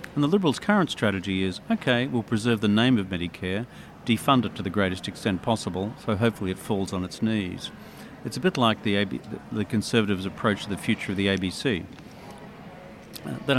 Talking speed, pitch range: 190 wpm, 100-120 Hz